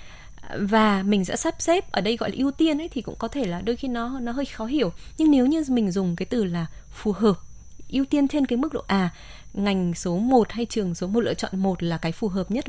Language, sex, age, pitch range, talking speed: Vietnamese, female, 20-39, 185-240 Hz, 265 wpm